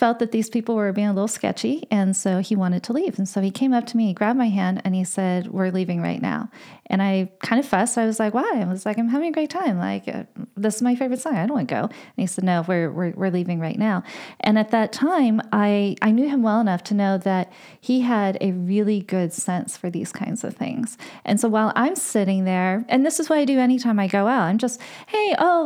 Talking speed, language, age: 275 wpm, English, 30-49